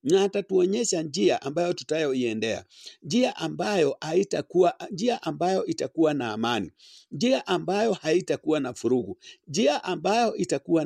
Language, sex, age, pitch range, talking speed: English, male, 50-69, 150-240 Hz, 110 wpm